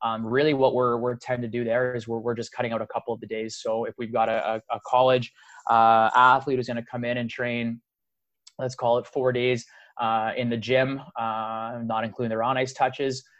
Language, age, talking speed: English, 20-39, 230 wpm